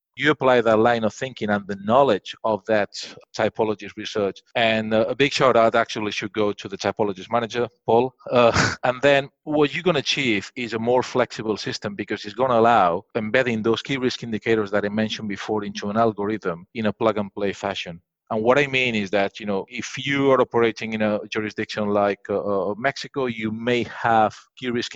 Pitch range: 105-125 Hz